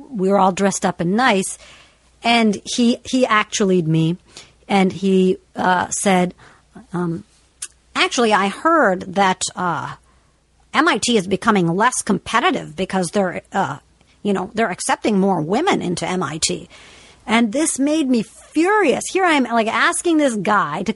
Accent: American